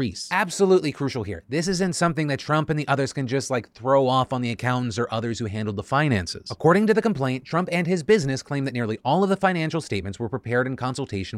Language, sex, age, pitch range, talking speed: English, male, 30-49, 125-175 Hz, 235 wpm